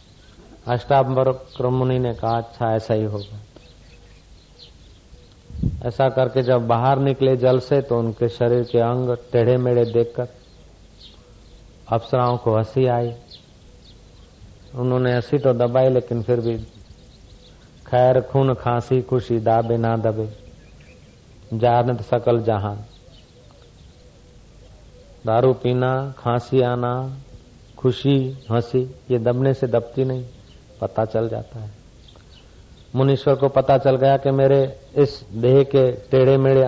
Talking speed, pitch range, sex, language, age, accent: 115 wpm, 100-130 Hz, male, Hindi, 50-69, native